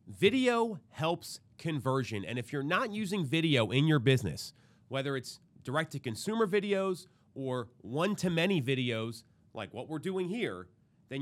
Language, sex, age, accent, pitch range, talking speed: English, male, 30-49, American, 130-185 Hz, 135 wpm